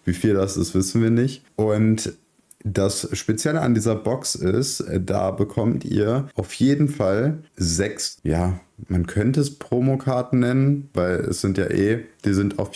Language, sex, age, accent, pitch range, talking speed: German, male, 30-49, German, 90-120 Hz, 165 wpm